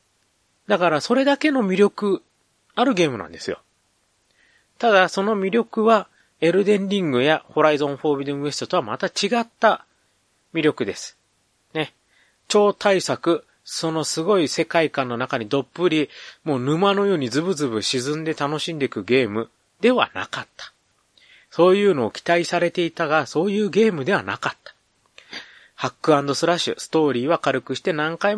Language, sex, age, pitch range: Japanese, male, 30-49, 140-190 Hz